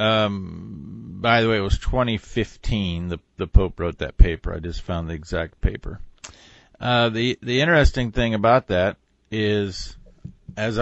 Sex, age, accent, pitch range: male, 50-69, American, 90-120 Hz